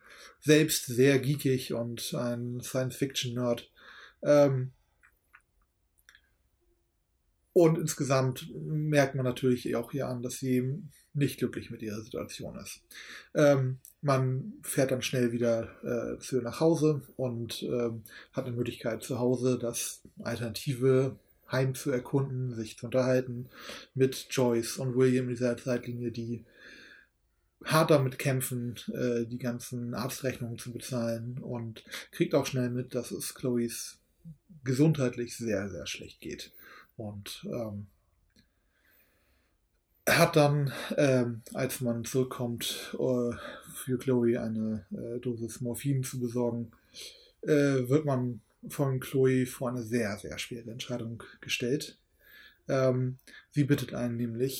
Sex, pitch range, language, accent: male, 120-135 Hz, German, German